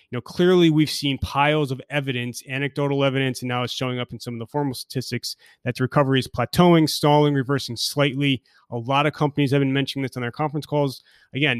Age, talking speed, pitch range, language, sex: 30-49, 215 wpm, 120-145 Hz, English, male